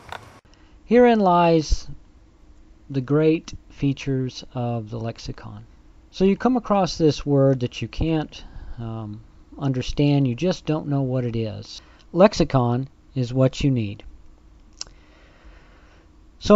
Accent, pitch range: American, 105-145 Hz